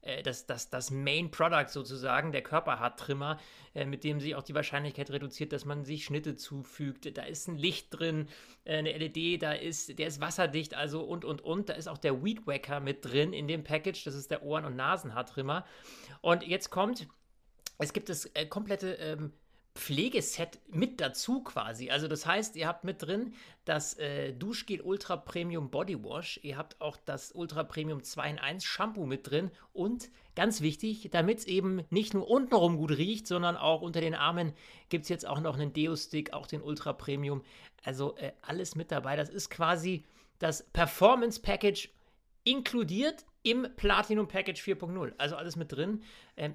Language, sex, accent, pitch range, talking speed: German, male, German, 145-190 Hz, 180 wpm